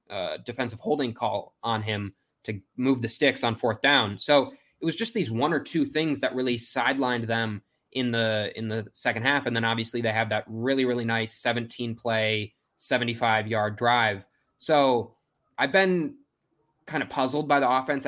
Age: 20-39